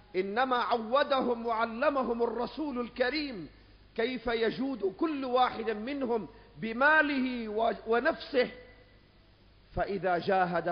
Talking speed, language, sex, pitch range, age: 80 wpm, Arabic, male, 145-220 Hz, 50-69